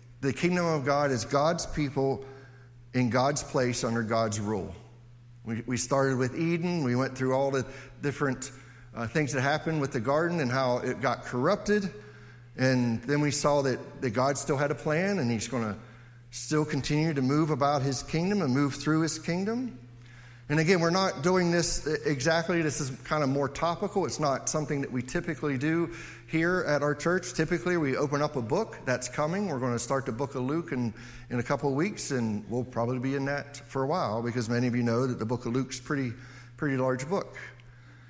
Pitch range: 120-155 Hz